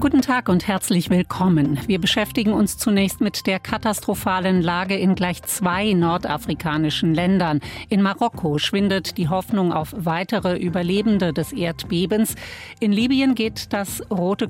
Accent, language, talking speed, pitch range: German, German, 135 wpm, 175-215 Hz